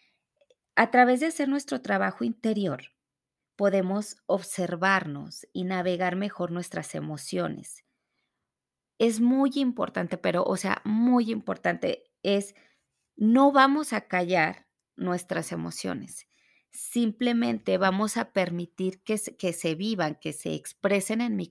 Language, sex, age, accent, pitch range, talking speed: Spanish, female, 30-49, Mexican, 180-240 Hz, 115 wpm